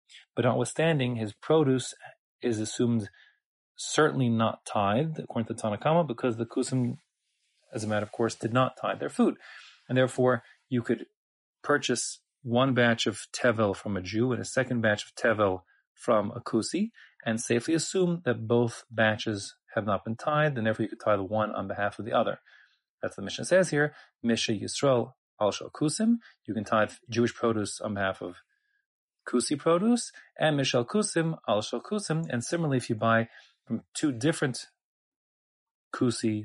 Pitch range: 110-140 Hz